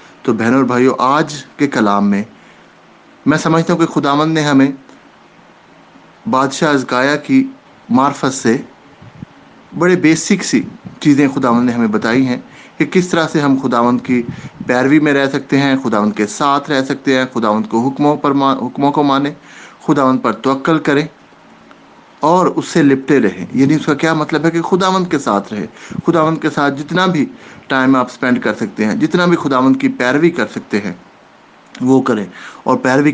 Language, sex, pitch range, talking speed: English, male, 125-160 Hz, 170 wpm